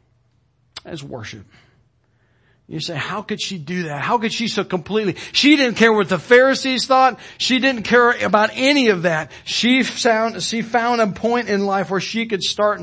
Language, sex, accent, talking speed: English, male, American, 180 wpm